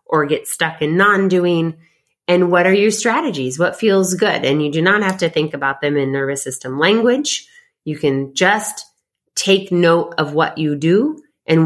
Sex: female